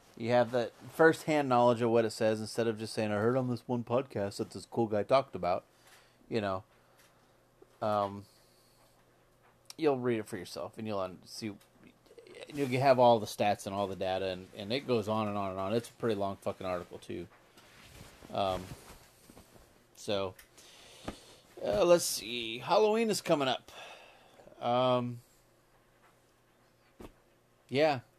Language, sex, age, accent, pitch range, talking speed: English, male, 30-49, American, 100-135 Hz, 155 wpm